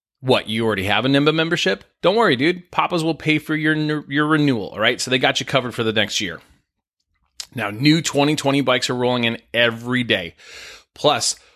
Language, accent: English, American